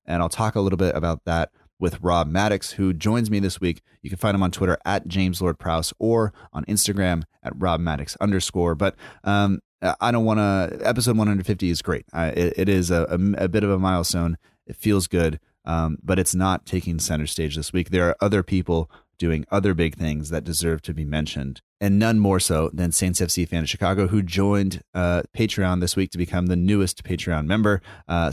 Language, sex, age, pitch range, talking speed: English, male, 30-49, 85-100 Hz, 215 wpm